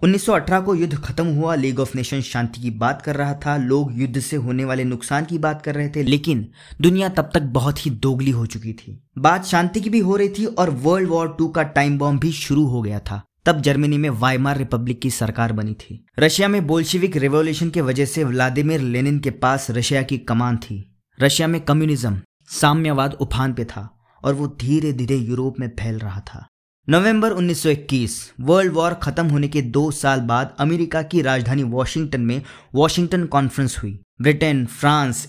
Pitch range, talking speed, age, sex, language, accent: 125-160 Hz, 195 wpm, 20-39, male, Hindi, native